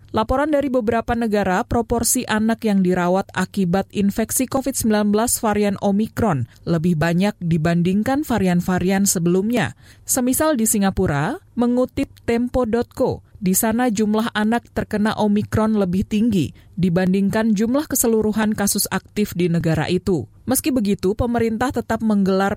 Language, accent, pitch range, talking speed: Indonesian, native, 185-235 Hz, 115 wpm